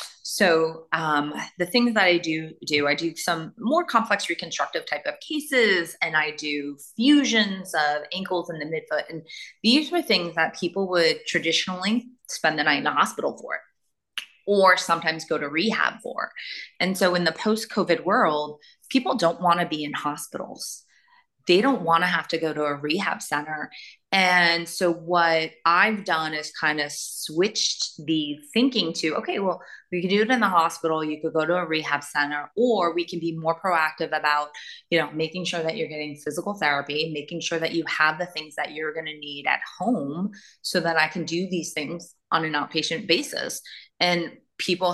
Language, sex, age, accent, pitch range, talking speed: English, female, 30-49, American, 155-185 Hz, 190 wpm